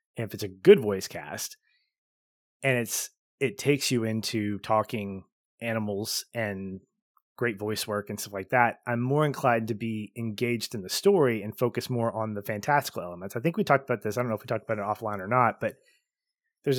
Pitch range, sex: 105-135 Hz, male